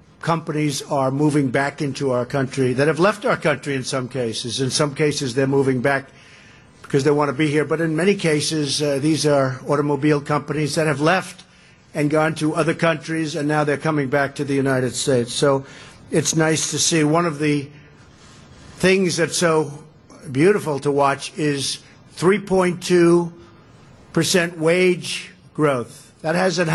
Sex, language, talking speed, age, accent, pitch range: male, English, 165 wpm, 50-69, American, 140-155 Hz